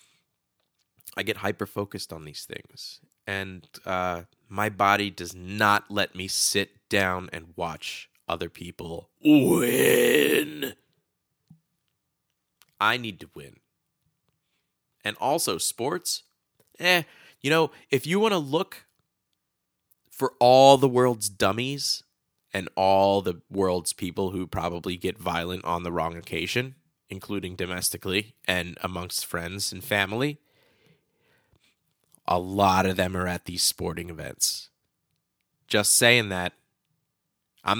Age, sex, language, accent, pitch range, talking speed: 20-39, male, English, American, 90-125 Hz, 115 wpm